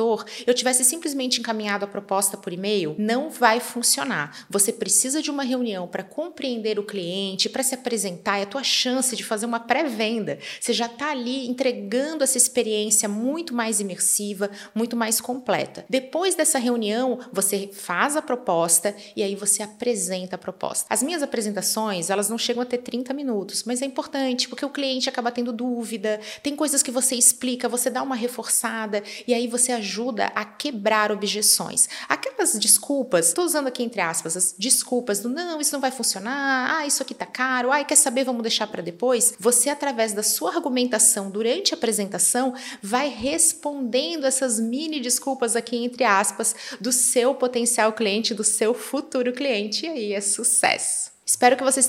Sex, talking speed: female, 175 wpm